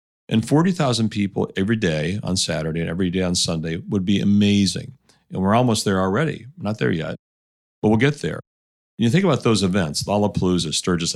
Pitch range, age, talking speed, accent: 85-125 Hz, 40-59, 195 wpm, American